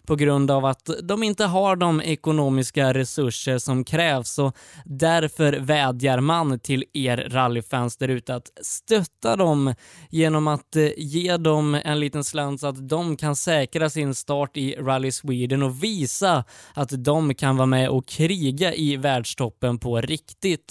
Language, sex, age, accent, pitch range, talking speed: Swedish, male, 20-39, native, 130-165 Hz, 155 wpm